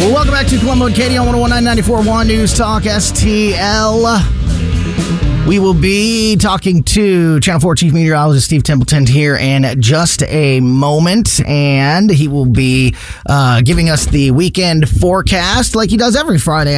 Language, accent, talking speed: English, American, 150 wpm